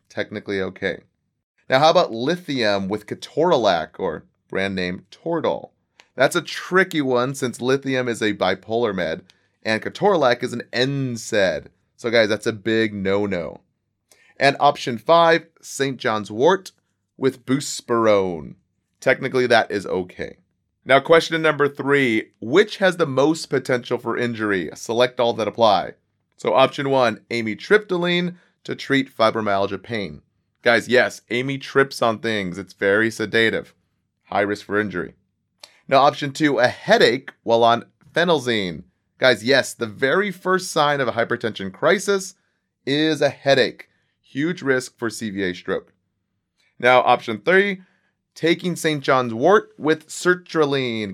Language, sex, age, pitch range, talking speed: English, male, 30-49, 110-145 Hz, 135 wpm